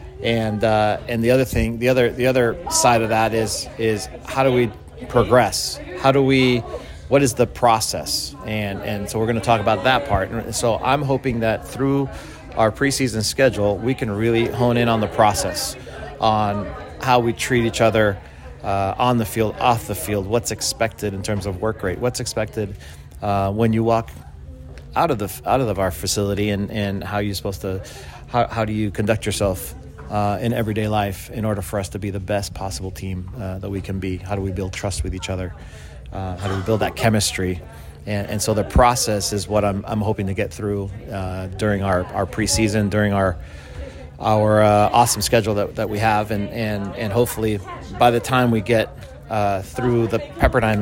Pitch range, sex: 95-115 Hz, male